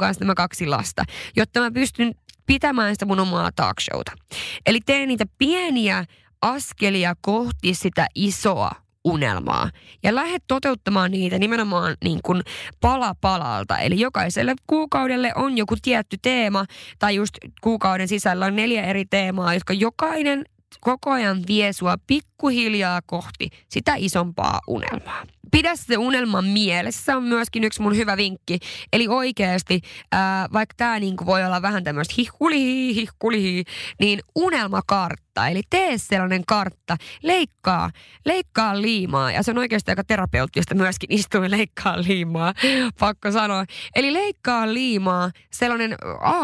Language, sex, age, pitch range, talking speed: Finnish, female, 20-39, 185-245 Hz, 135 wpm